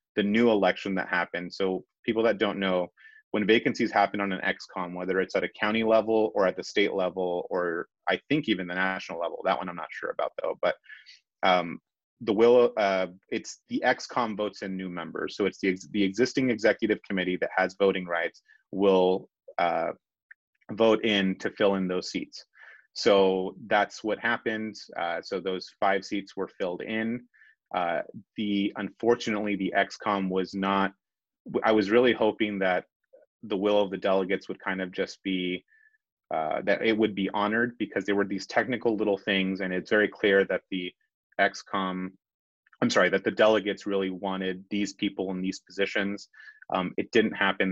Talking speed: 180 wpm